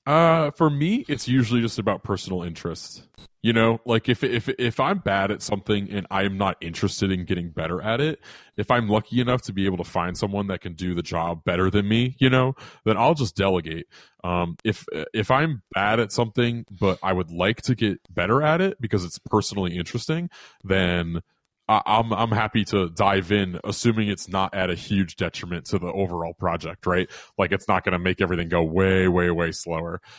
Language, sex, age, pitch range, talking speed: English, male, 20-39, 90-110 Hz, 205 wpm